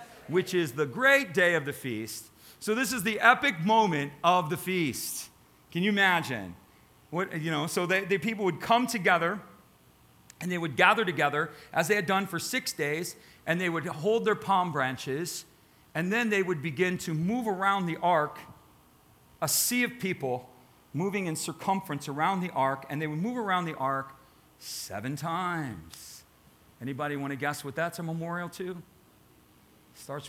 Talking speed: 175 wpm